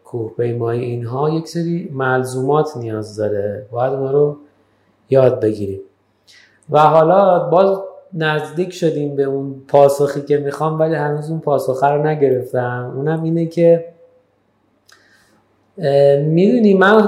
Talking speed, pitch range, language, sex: 120 wpm, 125-160 Hz, Persian, male